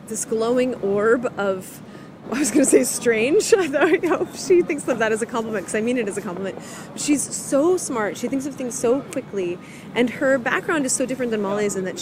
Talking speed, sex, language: 230 wpm, female, English